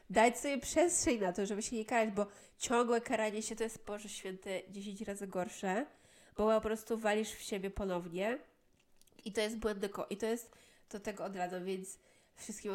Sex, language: female, Polish